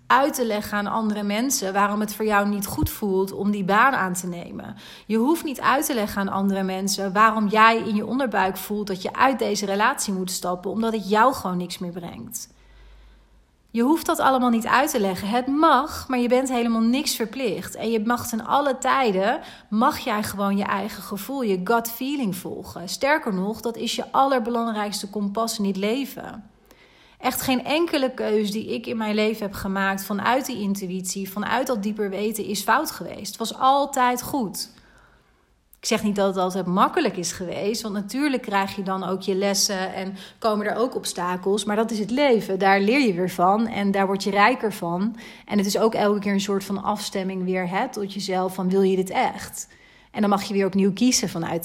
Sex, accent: female, Dutch